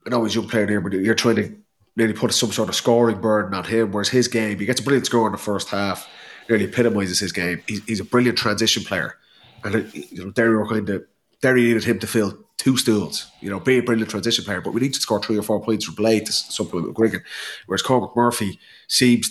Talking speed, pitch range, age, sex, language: 235 wpm, 100-120 Hz, 30-49, male, English